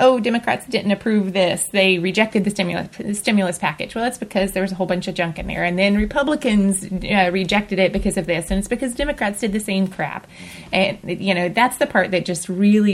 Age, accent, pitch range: 20-39, American, 175-195 Hz